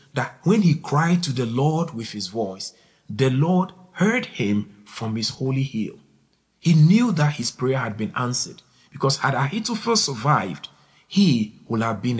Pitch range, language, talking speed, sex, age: 120-185 Hz, English, 170 wpm, male, 50-69